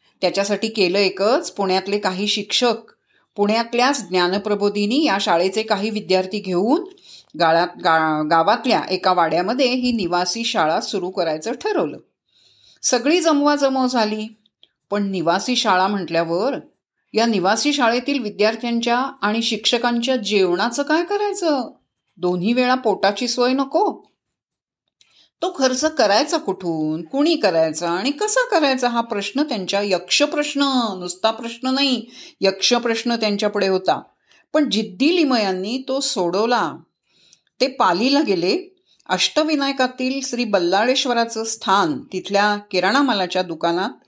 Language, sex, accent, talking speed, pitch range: Marathi, female, native, 110 wpm, 190-265 Hz